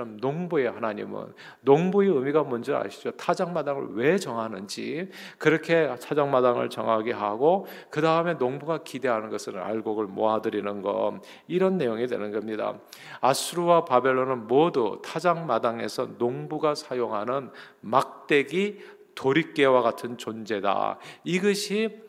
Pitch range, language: 120-170 Hz, Korean